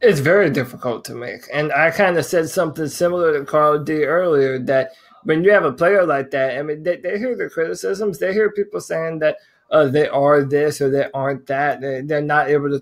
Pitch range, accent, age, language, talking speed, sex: 145-185 Hz, American, 20-39, English, 230 wpm, male